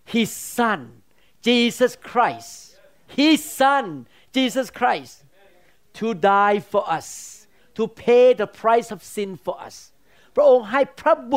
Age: 50-69